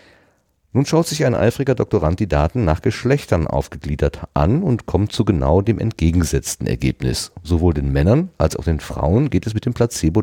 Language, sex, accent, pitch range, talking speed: German, male, German, 80-115 Hz, 180 wpm